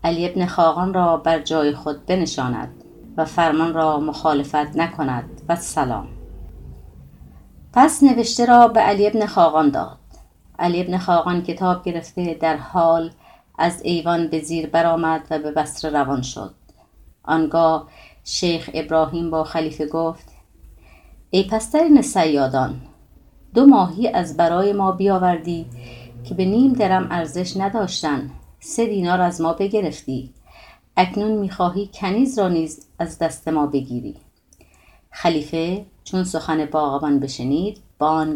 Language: Persian